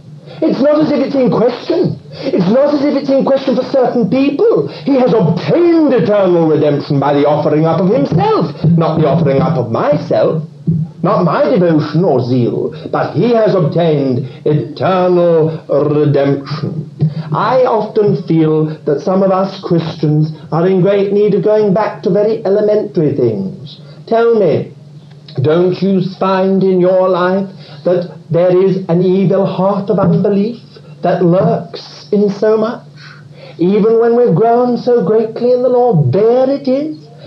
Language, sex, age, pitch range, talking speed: English, male, 60-79, 150-215 Hz, 155 wpm